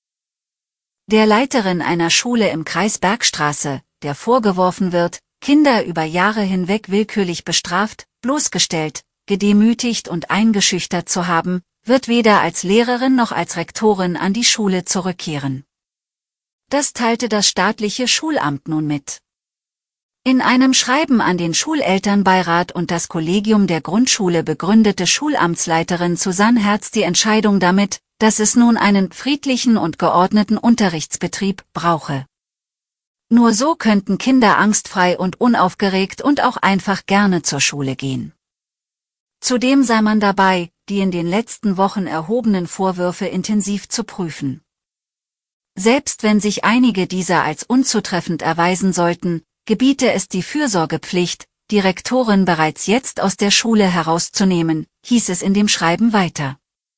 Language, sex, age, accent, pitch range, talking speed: German, female, 40-59, German, 170-220 Hz, 125 wpm